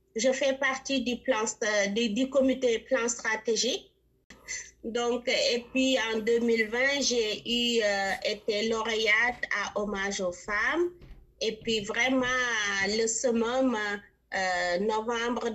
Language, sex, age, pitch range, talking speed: French, female, 30-49, 205-250 Hz, 120 wpm